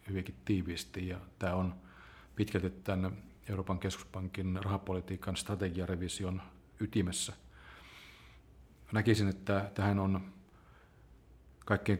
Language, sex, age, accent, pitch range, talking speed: Finnish, male, 40-59, native, 90-100 Hz, 85 wpm